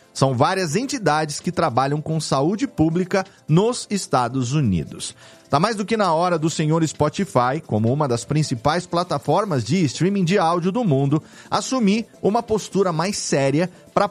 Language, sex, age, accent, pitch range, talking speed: Portuguese, male, 40-59, Brazilian, 130-190 Hz, 155 wpm